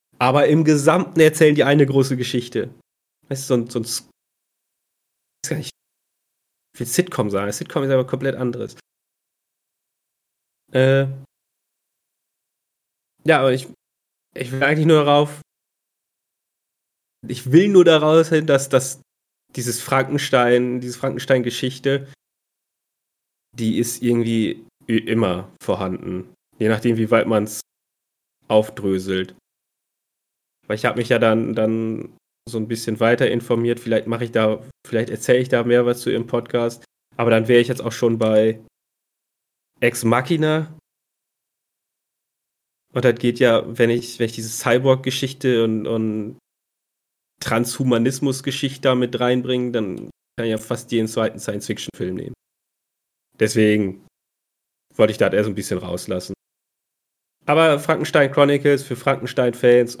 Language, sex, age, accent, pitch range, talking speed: German, male, 30-49, German, 115-135 Hz, 130 wpm